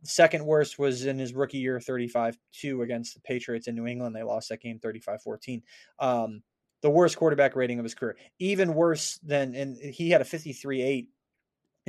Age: 20-39